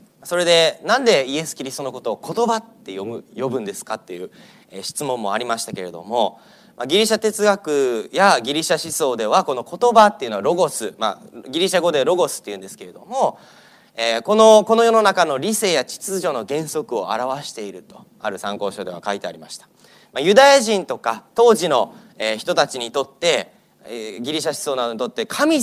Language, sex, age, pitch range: Japanese, male, 30-49, 160-240 Hz